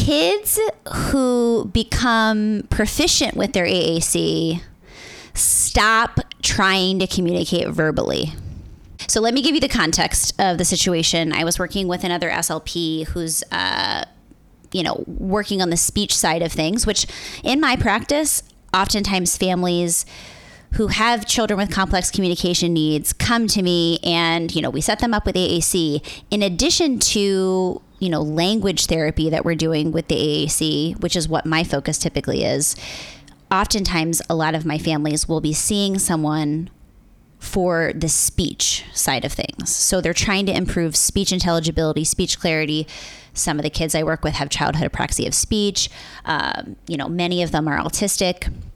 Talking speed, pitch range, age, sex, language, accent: 160 wpm, 160-200 Hz, 20-39, female, English, American